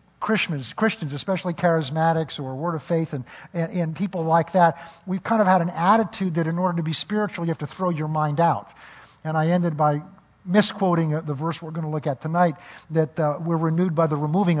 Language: English